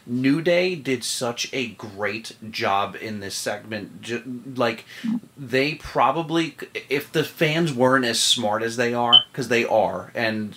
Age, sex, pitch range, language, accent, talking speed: 30-49, male, 105-130 Hz, English, American, 150 wpm